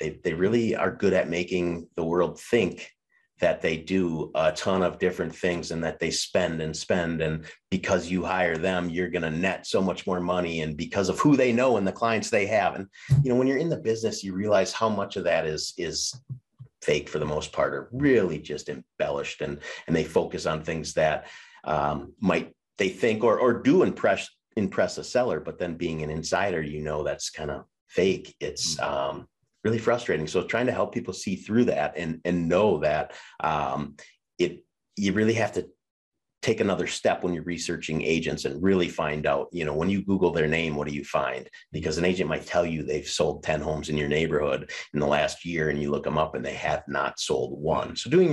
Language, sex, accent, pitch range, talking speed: English, male, American, 80-100 Hz, 220 wpm